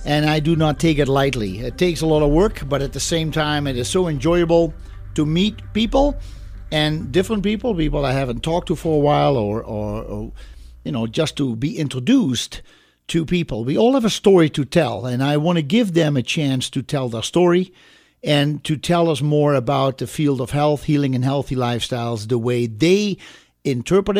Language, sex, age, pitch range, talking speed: English, male, 50-69, 125-165 Hz, 210 wpm